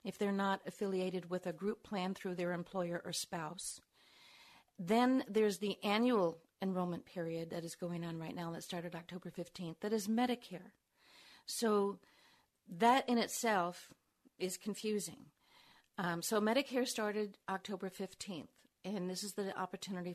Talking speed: 145 wpm